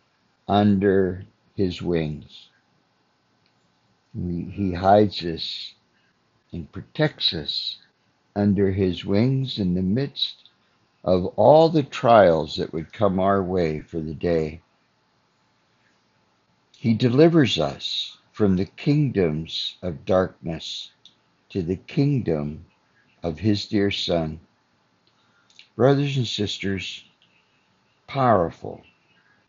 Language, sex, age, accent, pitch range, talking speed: English, male, 60-79, American, 85-115 Hz, 95 wpm